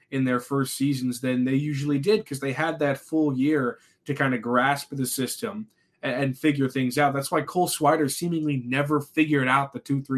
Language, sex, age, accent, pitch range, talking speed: English, male, 20-39, American, 130-170 Hz, 200 wpm